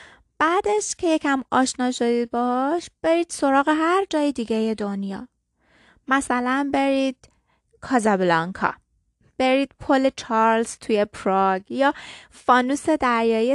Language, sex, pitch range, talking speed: Persian, female, 225-285 Hz, 100 wpm